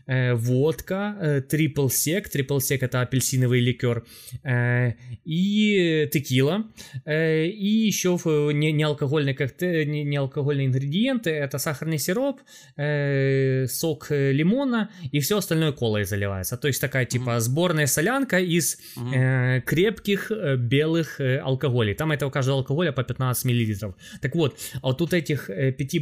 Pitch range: 125-170 Hz